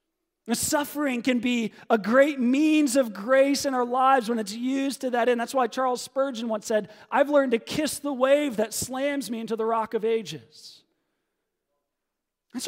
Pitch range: 215-270 Hz